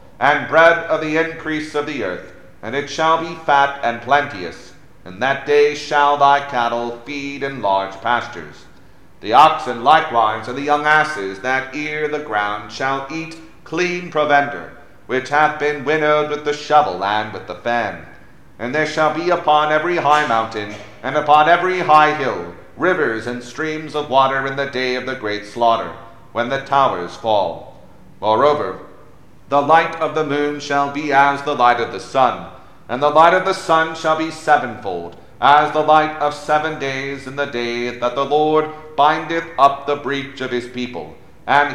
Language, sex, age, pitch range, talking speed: English, male, 40-59, 125-155 Hz, 175 wpm